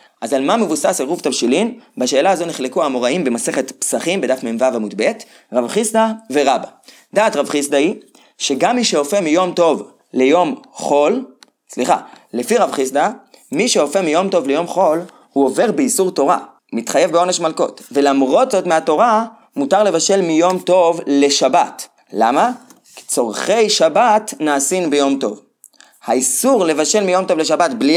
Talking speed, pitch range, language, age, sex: 145 wpm, 140-195 Hz, Hebrew, 30-49, male